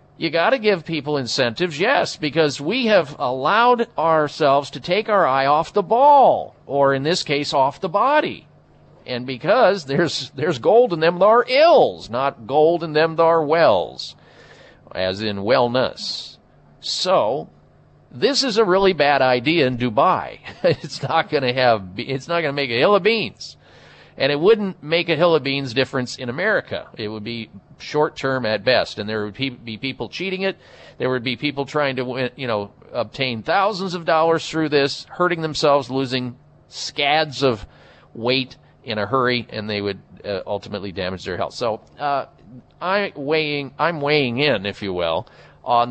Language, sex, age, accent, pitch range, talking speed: English, male, 50-69, American, 125-165 Hz, 180 wpm